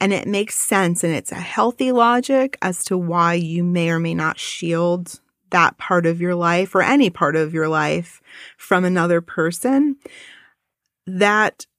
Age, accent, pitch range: 30-49, American, 170-205 Hz